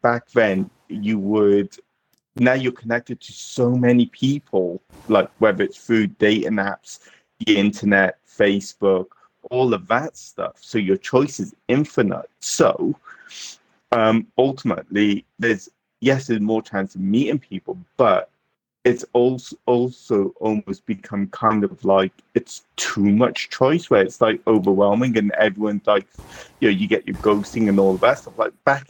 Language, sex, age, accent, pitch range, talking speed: English, male, 30-49, British, 105-135 Hz, 150 wpm